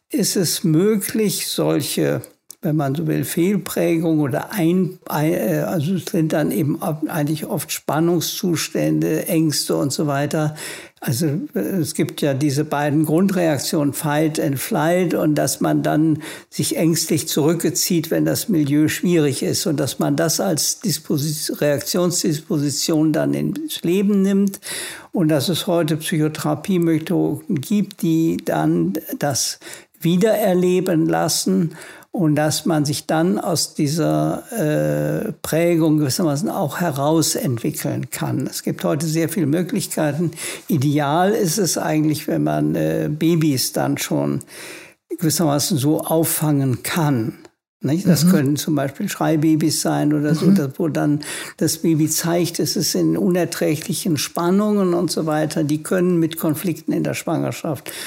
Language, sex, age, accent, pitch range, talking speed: German, male, 60-79, German, 150-175 Hz, 135 wpm